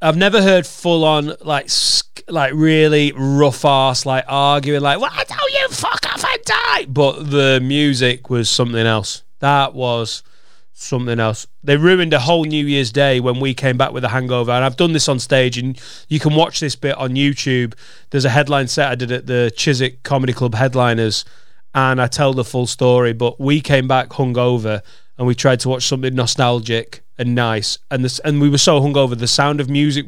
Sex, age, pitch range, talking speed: male, 30-49, 130-155 Hz, 205 wpm